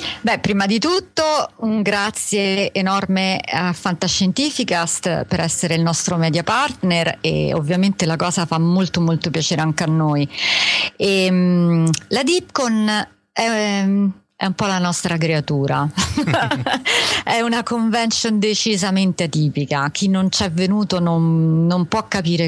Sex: female